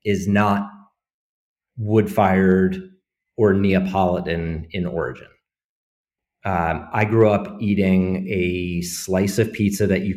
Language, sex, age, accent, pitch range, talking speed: English, male, 30-49, American, 95-110 Hz, 105 wpm